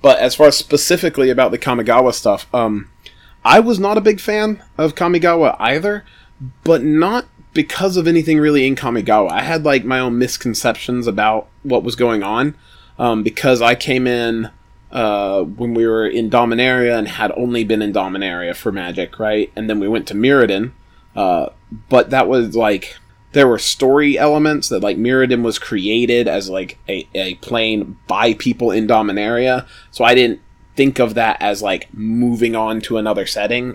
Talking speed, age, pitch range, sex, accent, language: 180 wpm, 30-49, 105-130 Hz, male, American, English